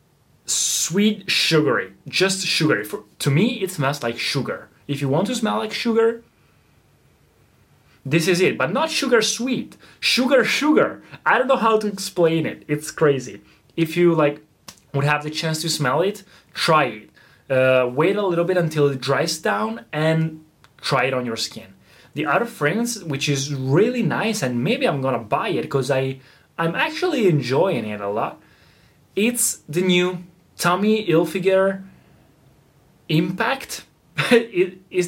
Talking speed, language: 155 wpm, Italian